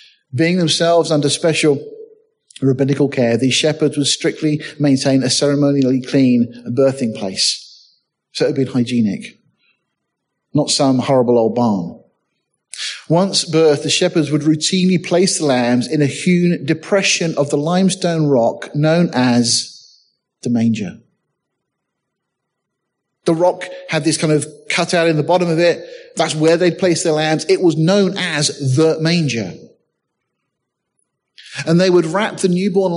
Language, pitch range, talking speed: English, 135-170 Hz, 140 wpm